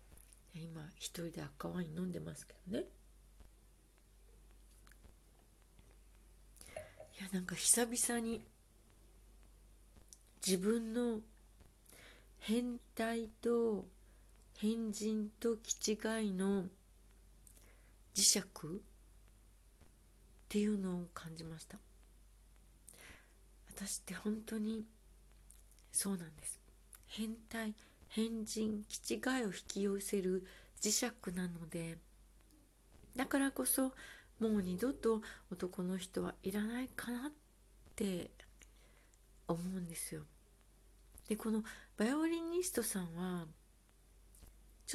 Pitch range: 170-225 Hz